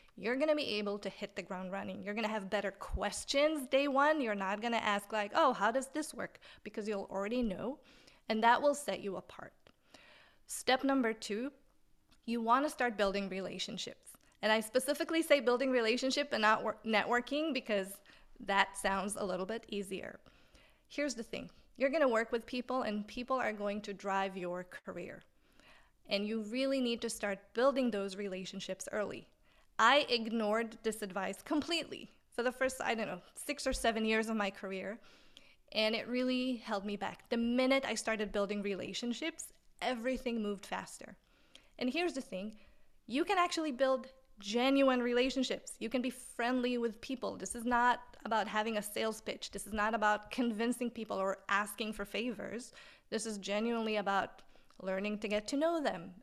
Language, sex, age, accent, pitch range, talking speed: English, female, 30-49, American, 205-260 Hz, 180 wpm